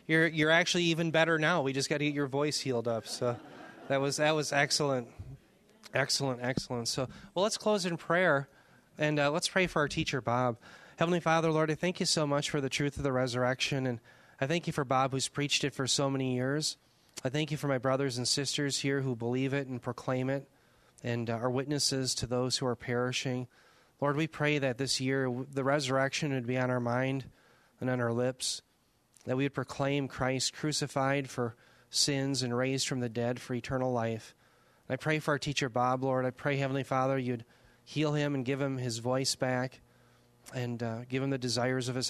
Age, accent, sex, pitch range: 30-49, American, male, 125-145 Hz